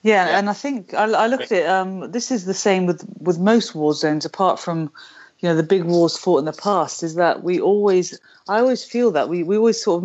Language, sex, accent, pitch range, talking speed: English, female, British, 160-195 Hz, 250 wpm